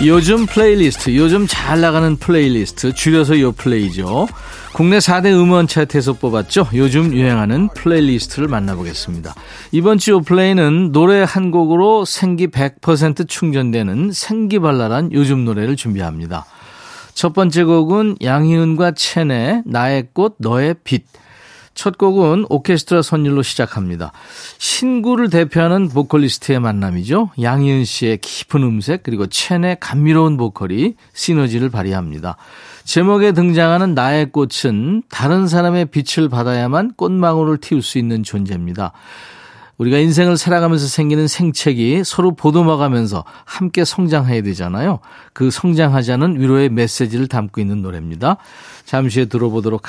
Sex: male